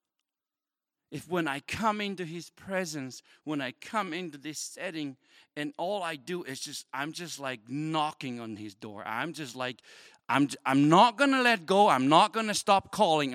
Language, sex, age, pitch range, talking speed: English, male, 60-79, 110-155 Hz, 190 wpm